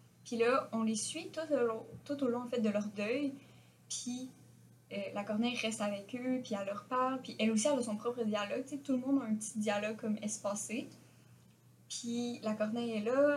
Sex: female